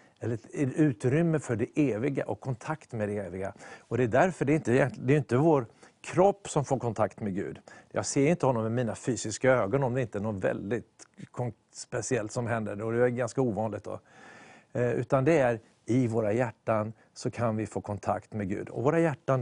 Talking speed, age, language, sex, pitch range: 205 wpm, 50-69, English, male, 110-145 Hz